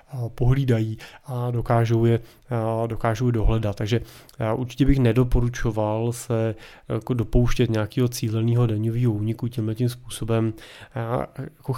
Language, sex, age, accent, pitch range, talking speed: Czech, male, 20-39, native, 110-125 Hz, 120 wpm